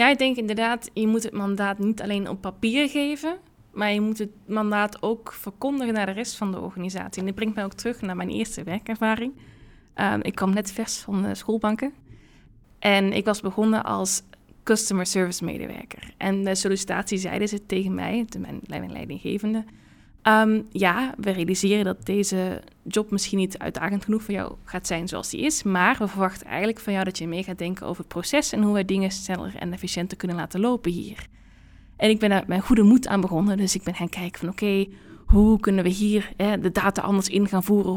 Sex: female